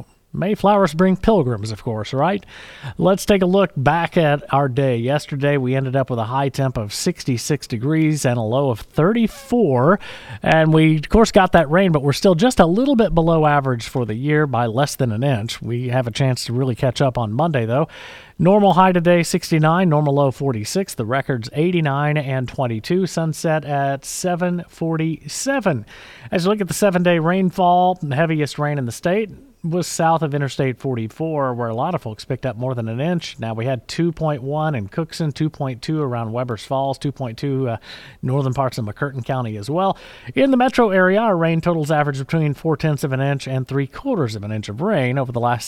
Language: English